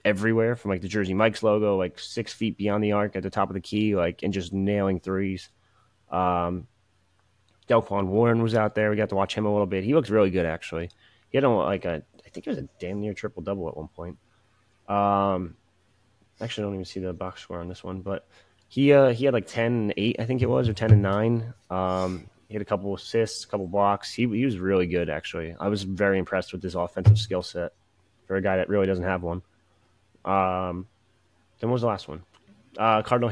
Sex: male